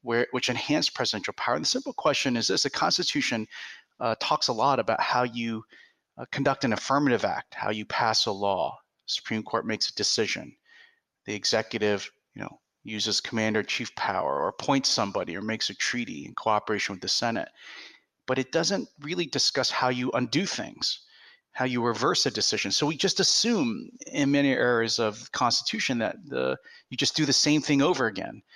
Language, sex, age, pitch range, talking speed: English, male, 30-49, 115-160 Hz, 185 wpm